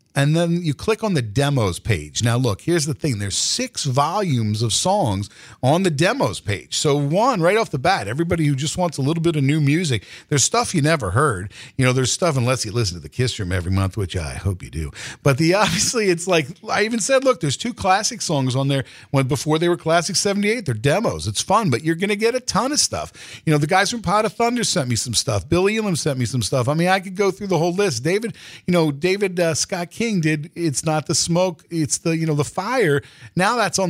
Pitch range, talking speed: 130-190 Hz, 255 wpm